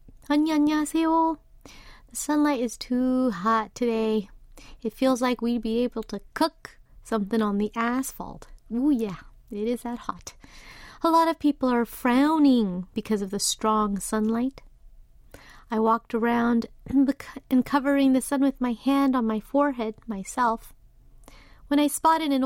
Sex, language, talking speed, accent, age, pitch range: female, English, 150 wpm, American, 30-49, 220-270 Hz